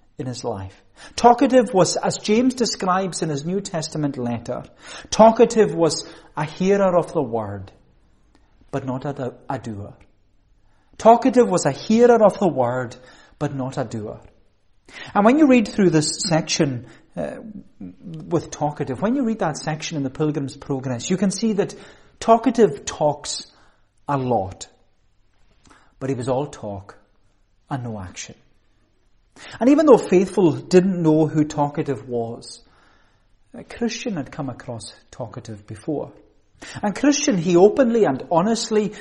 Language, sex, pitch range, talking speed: English, male, 120-190 Hz, 140 wpm